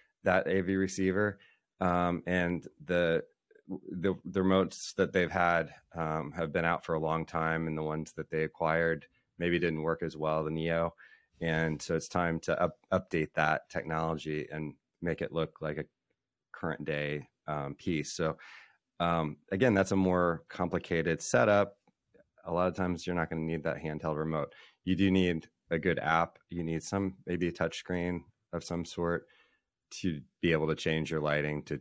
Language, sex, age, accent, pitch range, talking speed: English, male, 30-49, American, 75-85 Hz, 175 wpm